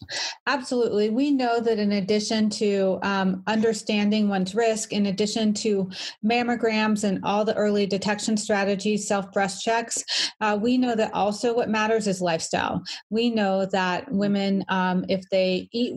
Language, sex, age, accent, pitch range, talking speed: English, female, 30-49, American, 200-230 Hz, 150 wpm